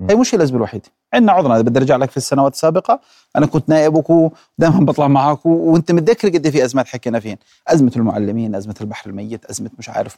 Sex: male